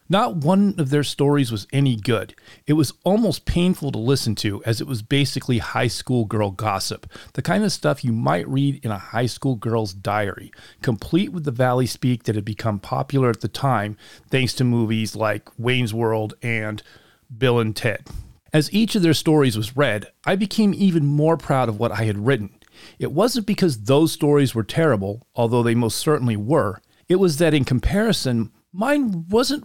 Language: English